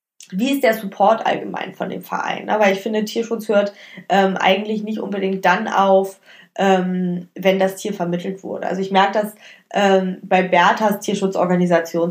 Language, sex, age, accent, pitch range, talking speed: German, female, 20-39, German, 185-215 Hz, 165 wpm